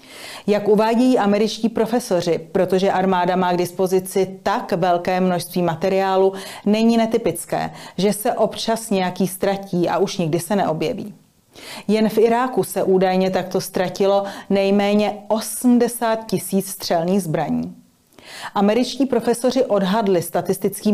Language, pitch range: Czech, 180-210 Hz